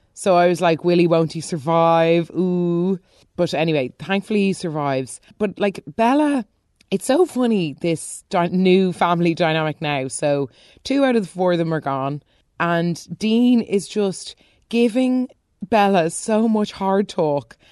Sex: female